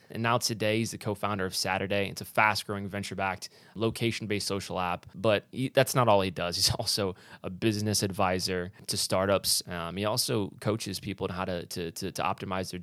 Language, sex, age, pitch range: English, male, 20-39, 90-105 Hz